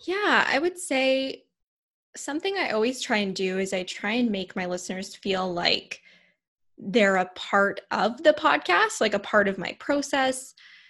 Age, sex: 10-29, female